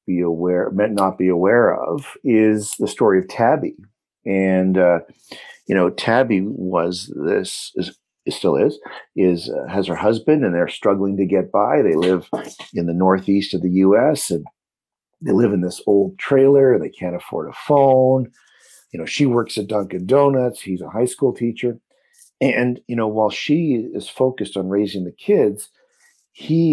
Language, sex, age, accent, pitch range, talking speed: English, male, 50-69, American, 95-125 Hz, 175 wpm